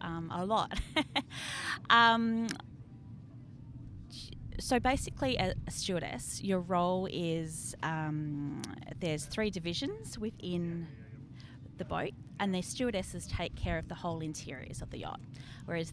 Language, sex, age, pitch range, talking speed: English, female, 20-39, 140-185 Hz, 120 wpm